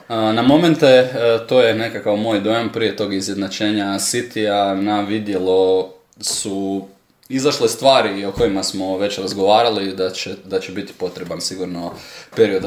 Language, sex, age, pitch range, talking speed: Croatian, male, 20-39, 95-115 Hz, 135 wpm